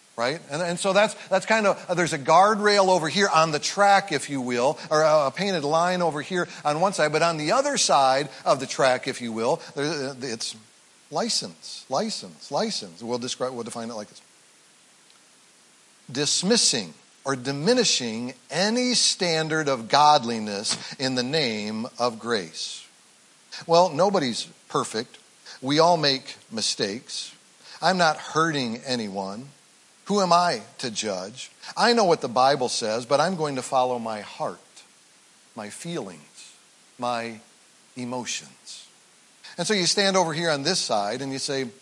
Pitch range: 130-185 Hz